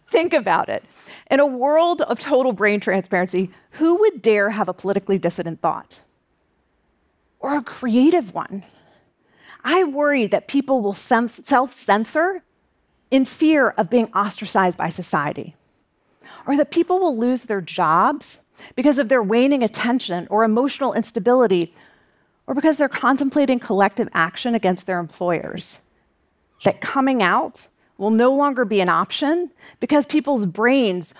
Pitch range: 195-275 Hz